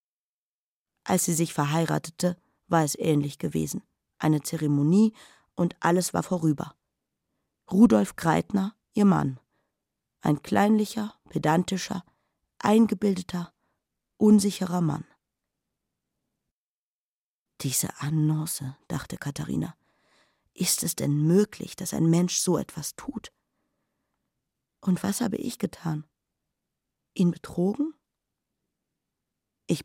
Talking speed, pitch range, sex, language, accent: 90 wpm, 160-200 Hz, female, German, German